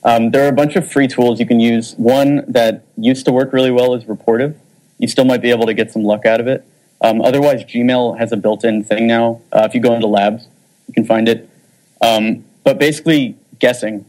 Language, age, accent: English, 30-49, American